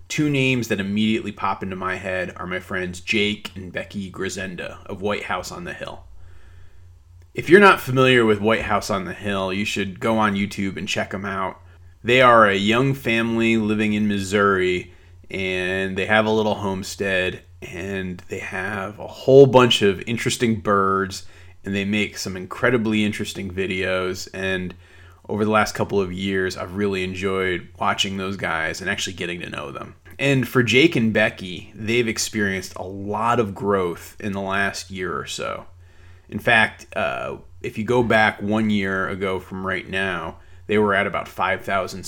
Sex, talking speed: male, 175 wpm